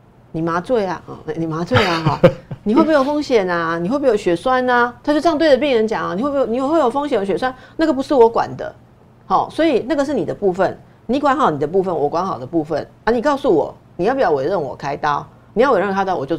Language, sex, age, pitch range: Chinese, female, 50-69, 170-270 Hz